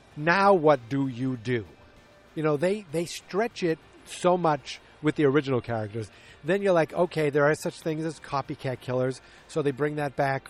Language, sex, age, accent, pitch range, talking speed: English, male, 40-59, American, 130-160 Hz, 190 wpm